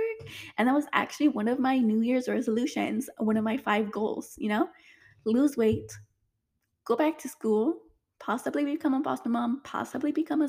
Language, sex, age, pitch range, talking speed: English, female, 10-29, 220-295 Hz, 175 wpm